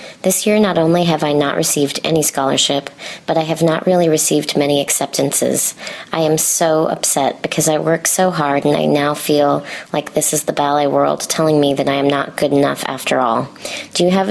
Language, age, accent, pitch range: English, 30-49, American, 145-180 Hz